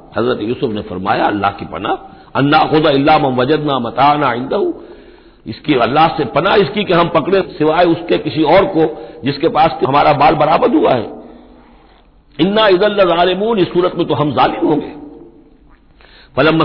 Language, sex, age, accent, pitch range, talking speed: Hindi, male, 60-79, native, 130-165 Hz, 150 wpm